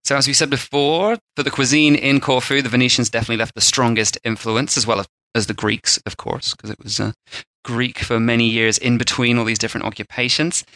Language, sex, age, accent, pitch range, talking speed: English, male, 30-49, British, 110-140 Hz, 210 wpm